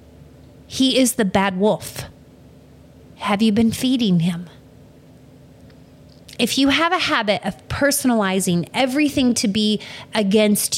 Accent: American